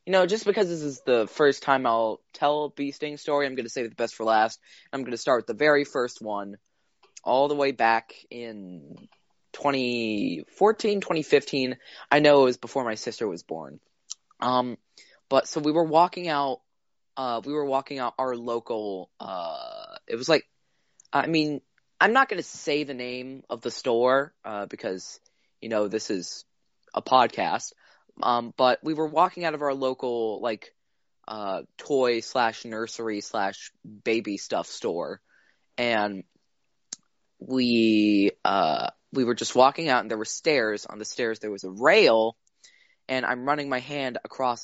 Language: English